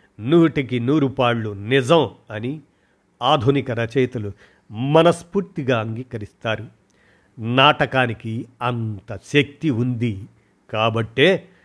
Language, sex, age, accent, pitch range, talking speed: Telugu, male, 50-69, native, 115-145 Hz, 70 wpm